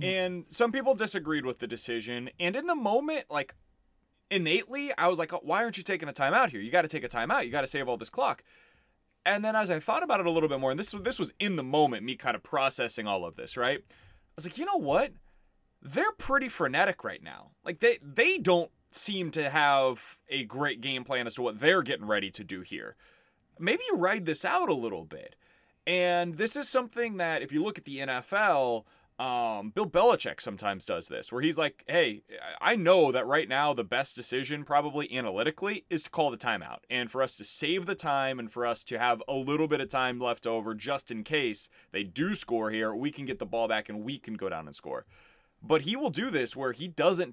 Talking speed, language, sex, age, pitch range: 235 wpm, English, male, 20-39, 125-185 Hz